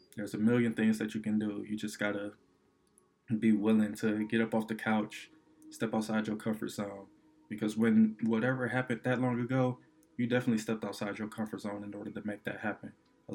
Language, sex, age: English, male, 20-39